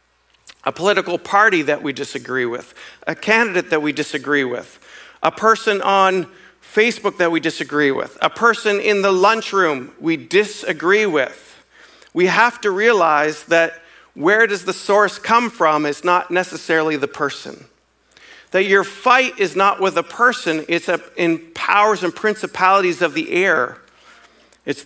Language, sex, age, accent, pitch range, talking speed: English, male, 50-69, American, 150-200 Hz, 150 wpm